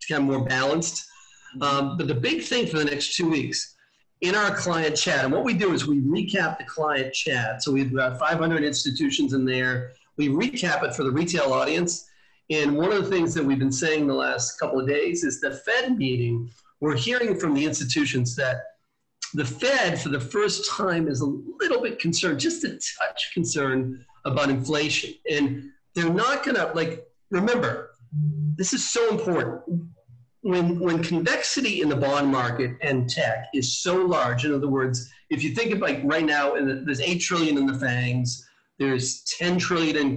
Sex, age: male, 40-59